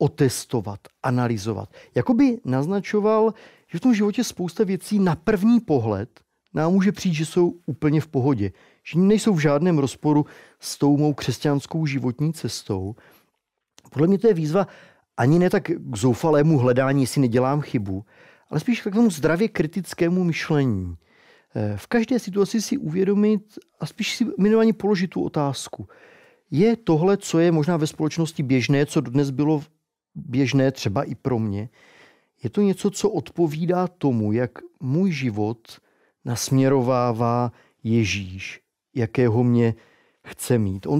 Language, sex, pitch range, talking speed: Czech, male, 120-180 Hz, 145 wpm